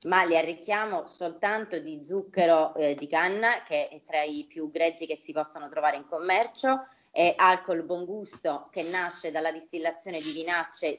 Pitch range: 165-230 Hz